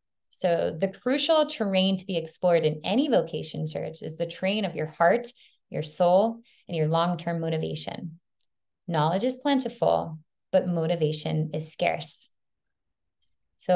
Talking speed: 135 wpm